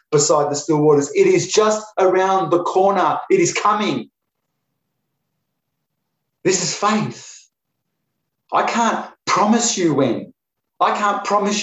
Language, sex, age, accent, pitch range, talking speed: English, male, 30-49, Australian, 170-205 Hz, 125 wpm